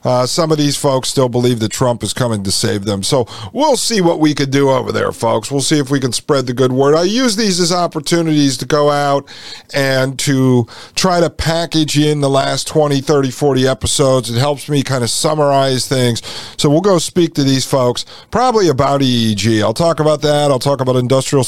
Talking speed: 220 wpm